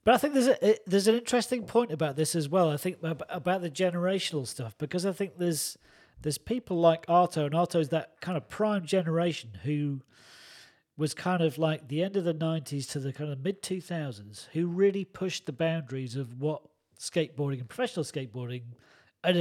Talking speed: 190 wpm